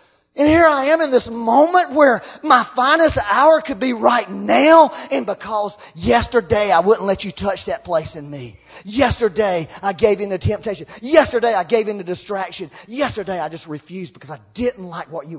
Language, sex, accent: English, male, American